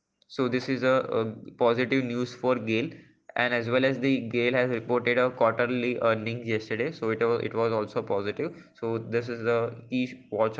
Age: 20-39